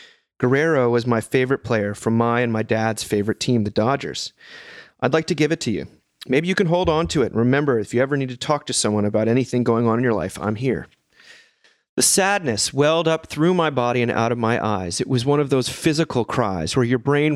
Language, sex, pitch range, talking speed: English, male, 120-150 Hz, 235 wpm